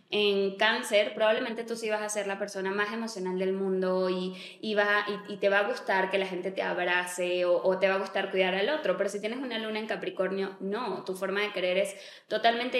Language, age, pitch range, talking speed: Spanish, 20-39, 190-215 Hz, 240 wpm